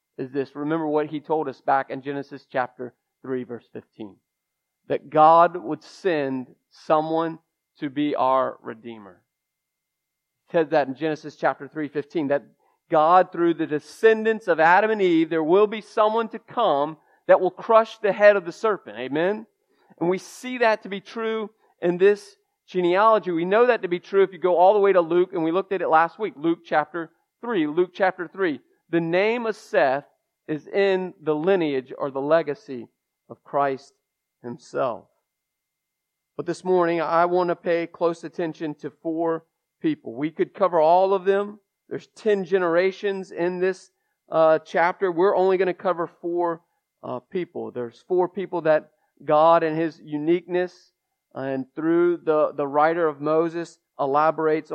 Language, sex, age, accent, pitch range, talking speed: English, male, 40-59, American, 150-190 Hz, 170 wpm